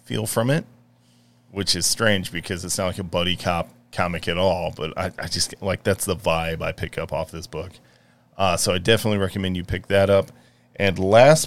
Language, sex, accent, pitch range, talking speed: English, male, American, 85-110 Hz, 215 wpm